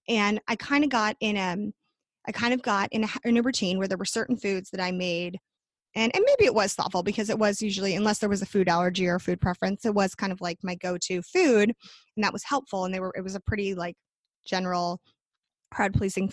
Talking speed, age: 240 wpm, 20-39